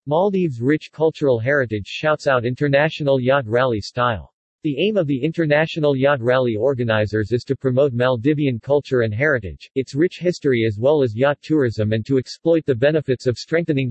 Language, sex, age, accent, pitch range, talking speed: English, male, 50-69, American, 120-150 Hz, 175 wpm